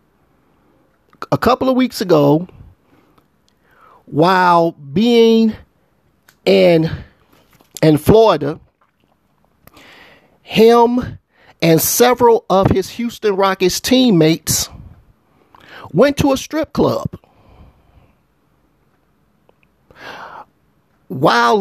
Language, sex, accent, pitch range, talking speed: English, male, American, 170-235 Hz, 65 wpm